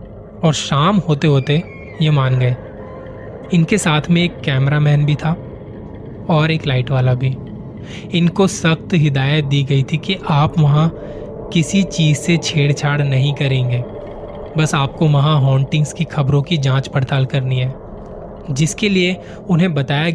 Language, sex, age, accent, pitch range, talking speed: Hindi, male, 20-39, native, 135-165 Hz, 145 wpm